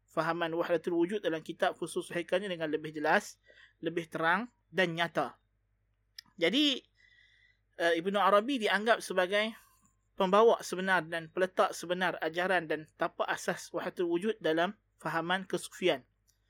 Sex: male